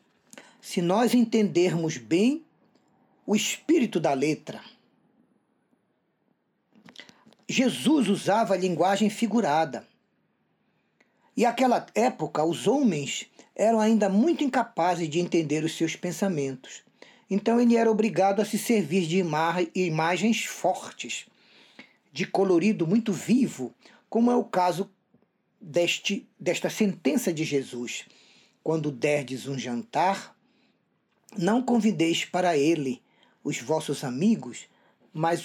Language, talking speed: Portuguese, 105 wpm